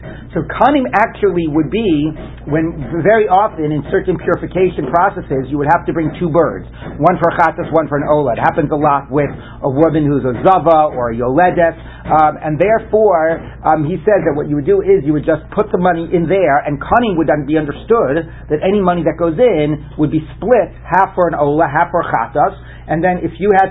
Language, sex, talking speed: English, male, 225 wpm